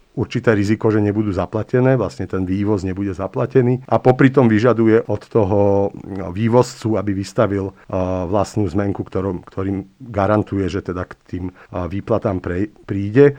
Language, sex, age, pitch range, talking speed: Slovak, male, 50-69, 105-120 Hz, 125 wpm